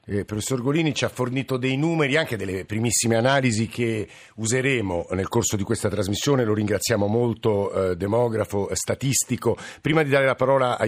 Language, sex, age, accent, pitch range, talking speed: Italian, male, 50-69, native, 115-135 Hz, 170 wpm